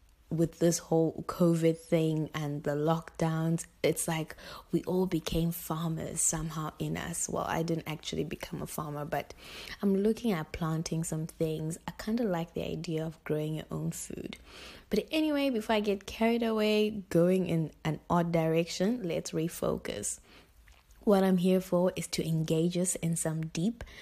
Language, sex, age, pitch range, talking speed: English, female, 20-39, 160-185 Hz, 165 wpm